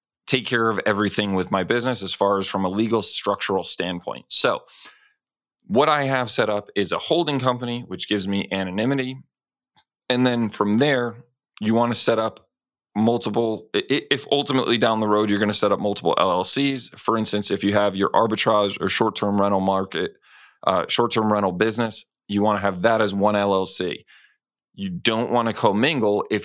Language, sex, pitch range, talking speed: English, male, 100-120 Hz, 180 wpm